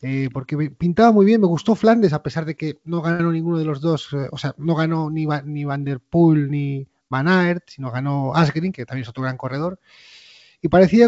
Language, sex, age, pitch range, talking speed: Spanish, male, 30-49, 145-190 Hz, 215 wpm